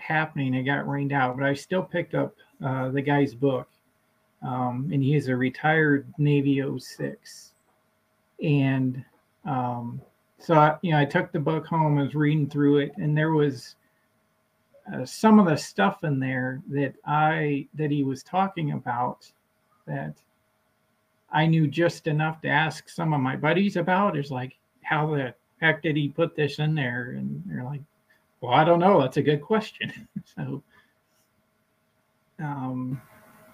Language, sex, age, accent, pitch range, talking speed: English, male, 40-59, American, 125-155 Hz, 165 wpm